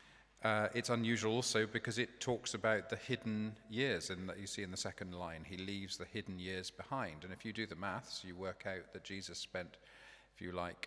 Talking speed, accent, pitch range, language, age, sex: 215 wpm, British, 90-105 Hz, English, 40-59, male